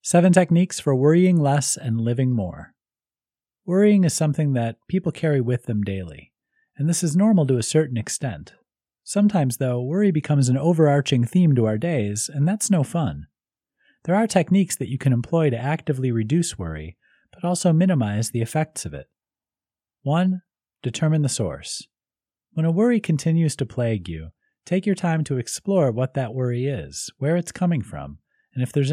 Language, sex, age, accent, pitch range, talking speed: English, male, 30-49, American, 120-170 Hz, 175 wpm